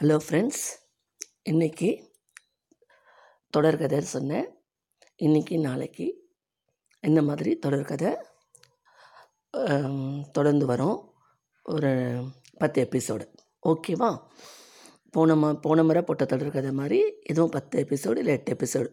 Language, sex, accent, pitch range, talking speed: Tamil, female, native, 135-165 Hz, 100 wpm